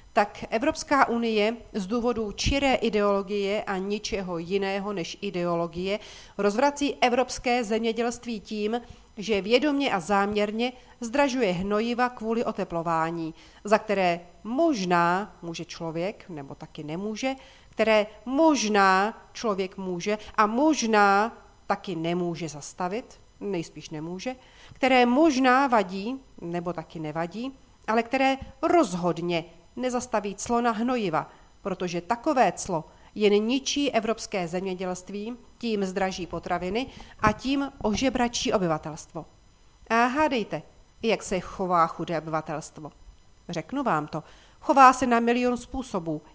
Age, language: 40-59, Czech